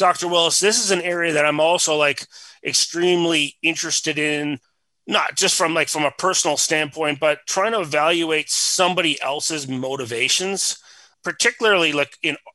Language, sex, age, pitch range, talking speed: English, male, 30-49, 135-160 Hz, 150 wpm